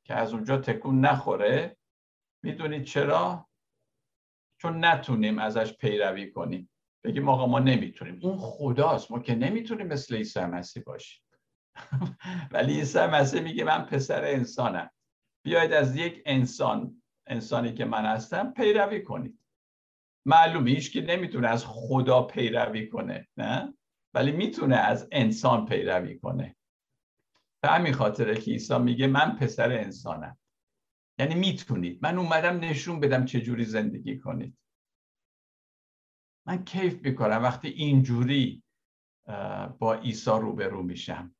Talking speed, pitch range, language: 120 wpm, 120-150 Hz, Persian